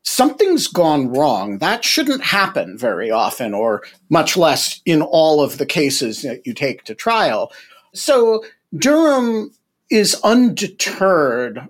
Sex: male